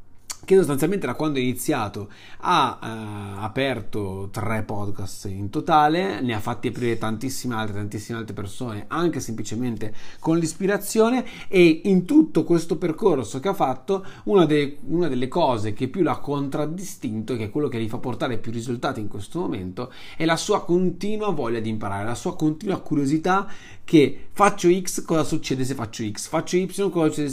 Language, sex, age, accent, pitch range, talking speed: Italian, male, 30-49, native, 110-155 Hz, 165 wpm